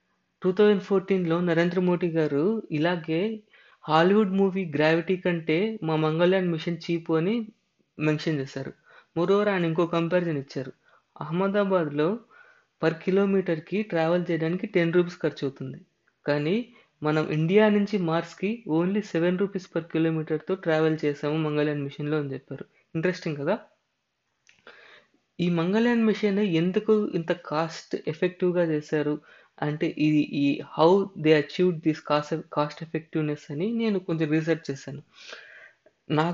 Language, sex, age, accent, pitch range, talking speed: Telugu, female, 20-39, native, 155-190 Hz, 120 wpm